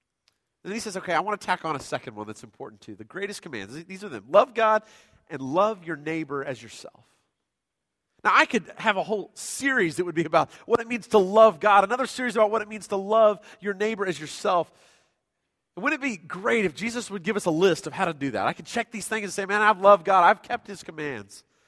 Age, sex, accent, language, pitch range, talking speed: 40-59, male, American, English, 165-220 Hz, 245 wpm